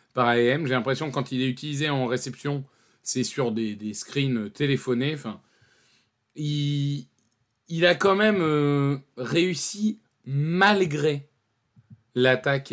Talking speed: 125 wpm